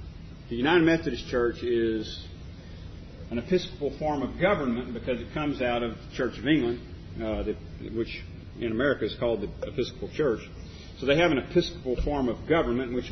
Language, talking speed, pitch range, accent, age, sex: English, 175 wpm, 95-130 Hz, American, 40-59, male